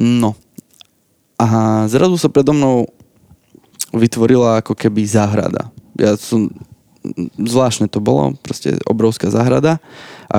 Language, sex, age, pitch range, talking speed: Slovak, male, 20-39, 110-120 Hz, 105 wpm